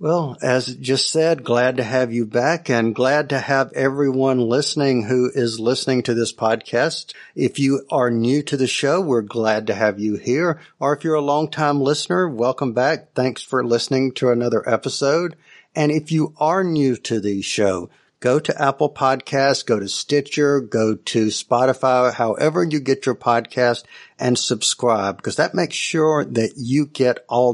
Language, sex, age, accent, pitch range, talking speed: English, male, 50-69, American, 120-145 Hz, 180 wpm